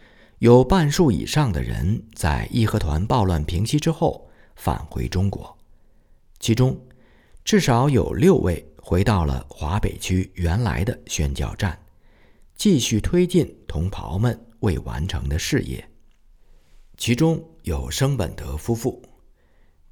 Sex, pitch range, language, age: male, 80-125 Hz, Chinese, 50-69